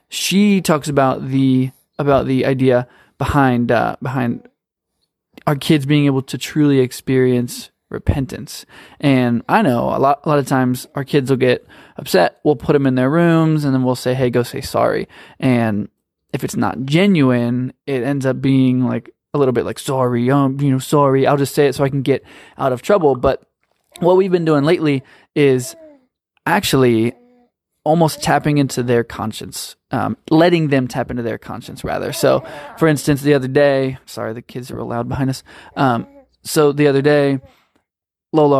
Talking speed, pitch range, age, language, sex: 180 wpm, 125-150 Hz, 20-39, English, male